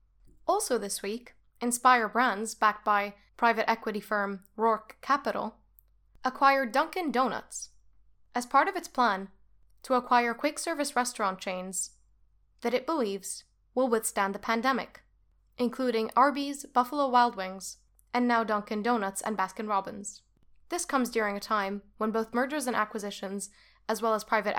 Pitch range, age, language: 205-260 Hz, 10-29, English